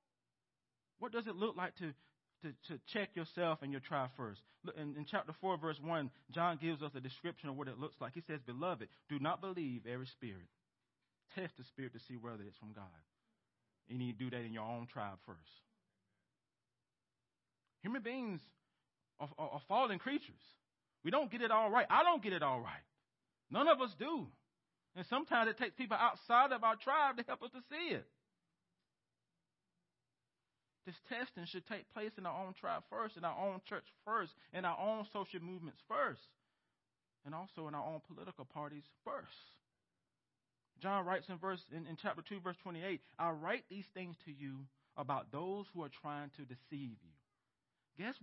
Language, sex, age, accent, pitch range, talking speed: English, male, 40-59, American, 130-200 Hz, 185 wpm